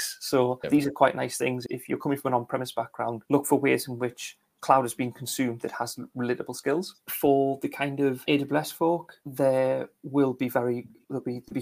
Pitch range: 120-140 Hz